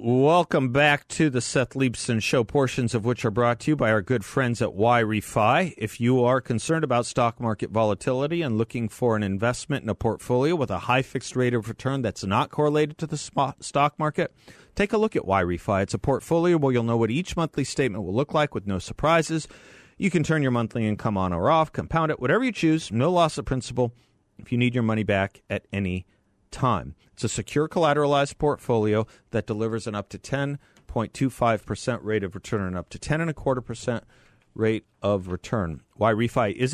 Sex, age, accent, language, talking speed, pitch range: male, 40-59, American, English, 205 wpm, 100-140 Hz